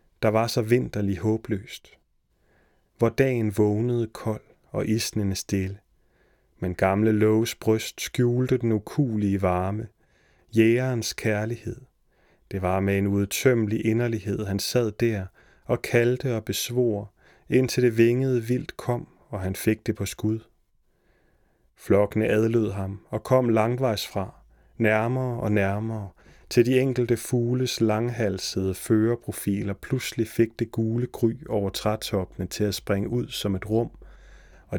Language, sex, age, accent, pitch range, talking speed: Danish, male, 30-49, native, 100-120 Hz, 135 wpm